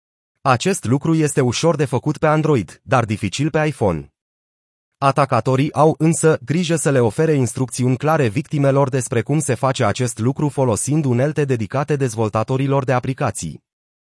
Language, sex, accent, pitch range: Romanian, male, native, 120-150 Hz